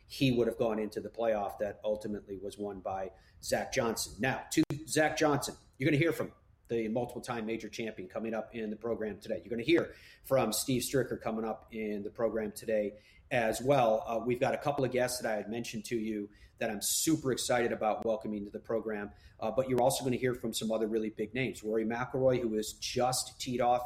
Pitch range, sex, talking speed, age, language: 110-130 Hz, male, 225 wpm, 30-49, English